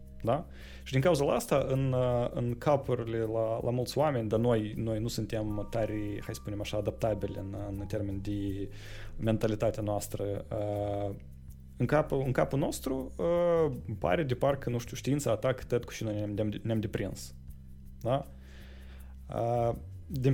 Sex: male